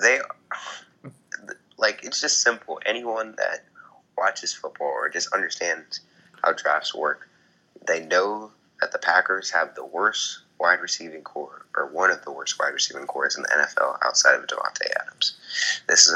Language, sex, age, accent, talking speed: English, male, 20-39, American, 150 wpm